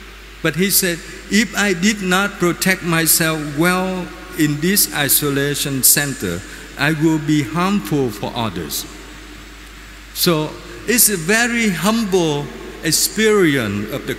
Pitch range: 140-180 Hz